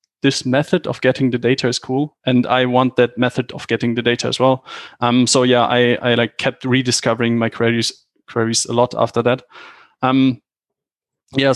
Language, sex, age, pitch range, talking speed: English, male, 20-39, 125-140 Hz, 185 wpm